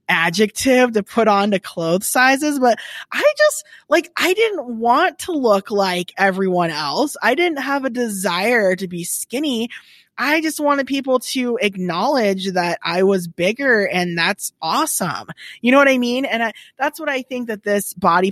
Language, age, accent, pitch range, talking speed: English, 20-39, American, 165-215 Hz, 175 wpm